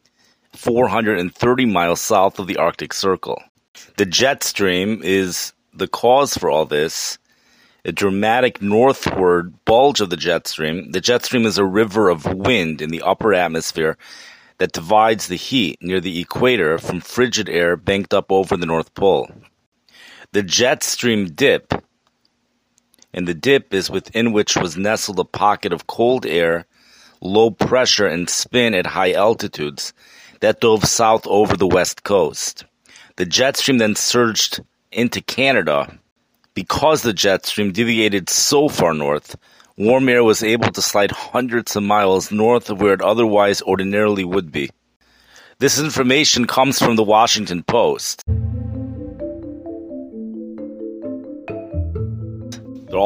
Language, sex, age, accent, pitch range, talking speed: English, male, 30-49, American, 90-120 Hz, 140 wpm